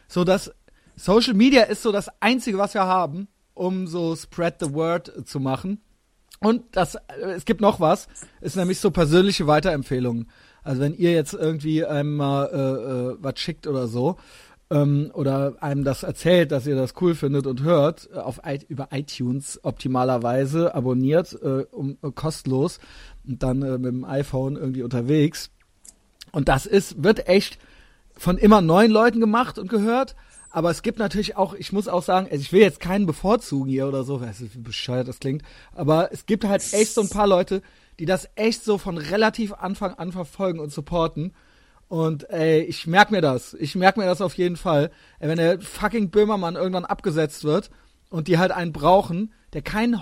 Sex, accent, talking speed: male, German, 185 wpm